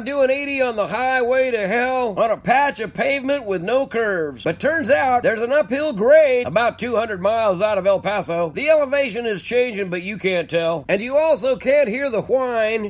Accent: American